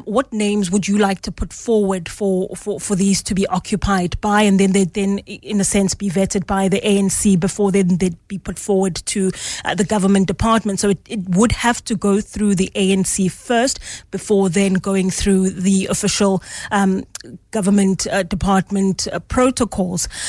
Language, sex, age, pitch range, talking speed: English, female, 30-49, 195-210 Hz, 185 wpm